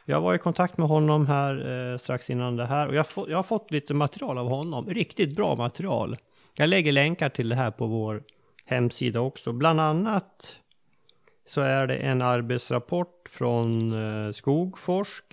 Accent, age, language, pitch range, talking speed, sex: native, 30-49, Swedish, 115-145 Hz, 165 wpm, male